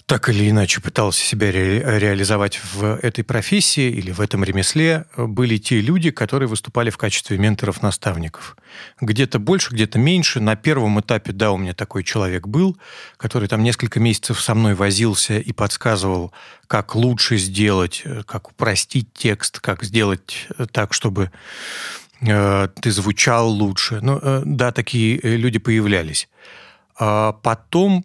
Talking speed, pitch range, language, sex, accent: 135 wpm, 105-130 Hz, Russian, male, native